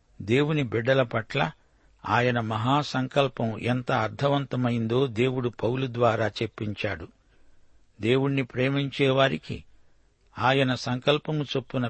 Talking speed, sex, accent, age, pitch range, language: 80 wpm, male, native, 60-79, 110-135 Hz, Telugu